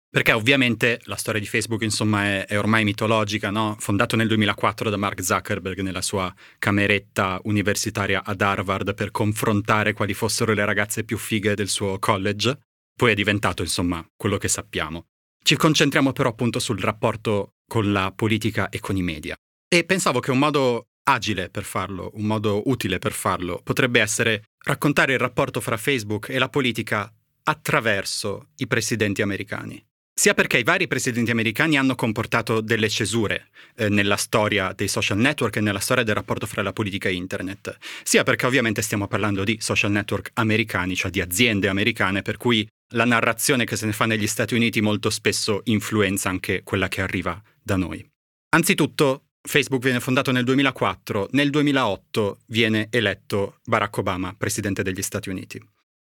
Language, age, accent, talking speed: Italian, 30-49, native, 170 wpm